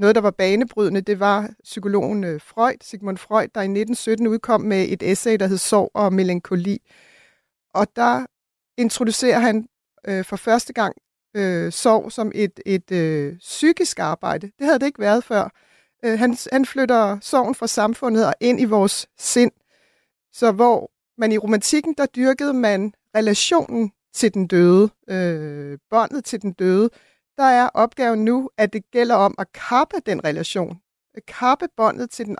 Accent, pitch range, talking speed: native, 195-240 Hz, 165 wpm